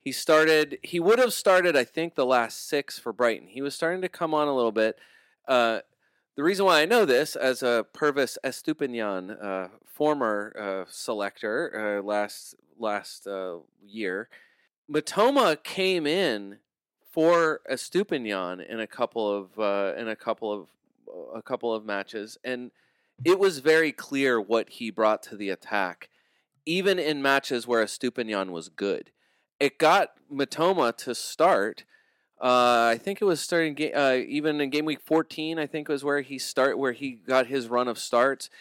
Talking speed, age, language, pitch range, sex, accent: 170 wpm, 30-49, English, 115-155 Hz, male, American